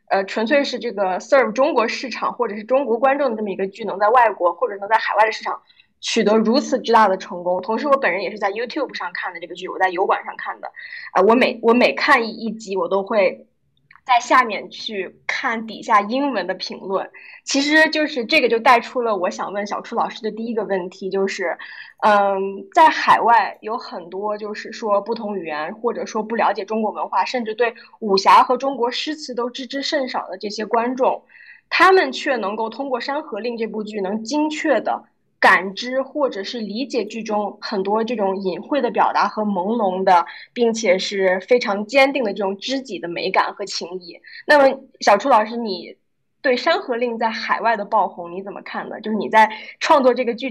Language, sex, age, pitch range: Chinese, female, 10-29, 200-260 Hz